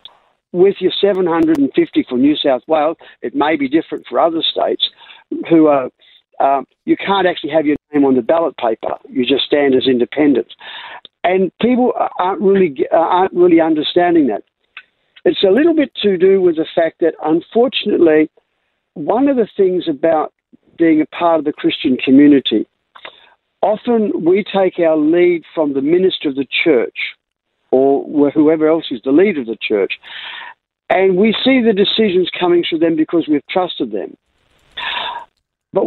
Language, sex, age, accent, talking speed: English, male, 60-79, Australian, 160 wpm